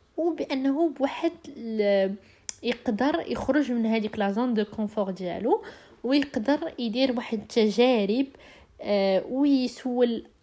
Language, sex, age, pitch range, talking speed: Arabic, female, 20-39, 205-275 Hz, 100 wpm